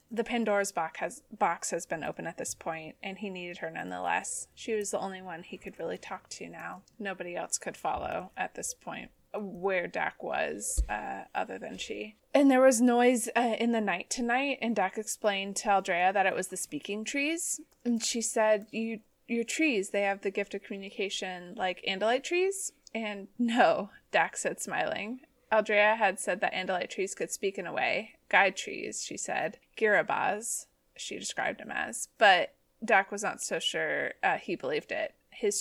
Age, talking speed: 20-39, 190 wpm